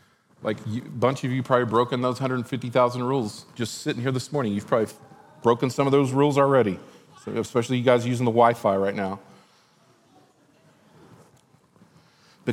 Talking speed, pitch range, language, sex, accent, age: 160 wpm, 120-150 Hz, English, male, American, 40-59